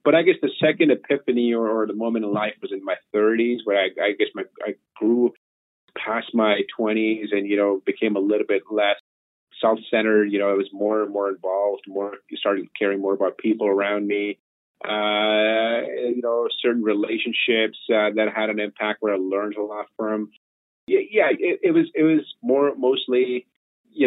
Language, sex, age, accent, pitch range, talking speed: English, male, 30-49, American, 100-125 Hz, 185 wpm